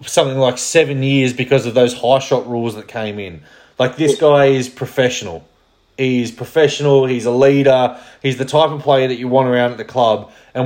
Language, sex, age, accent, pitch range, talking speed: English, male, 20-39, Australian, 120-135 Hz, 205 wpm